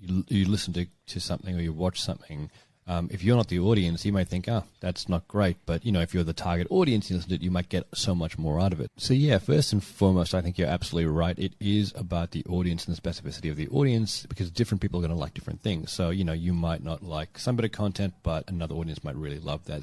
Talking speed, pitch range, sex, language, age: 265 wpm, 85-100 Hz, male, English, 30-49